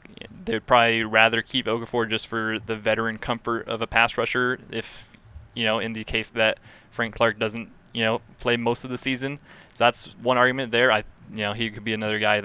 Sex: male